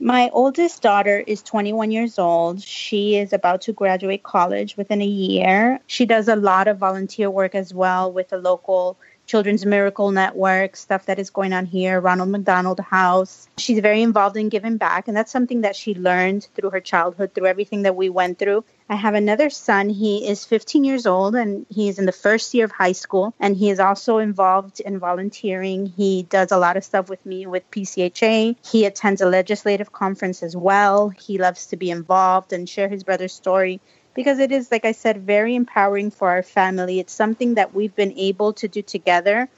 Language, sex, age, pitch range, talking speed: English, female, 30-49, 190-220 Hz, 205 wpm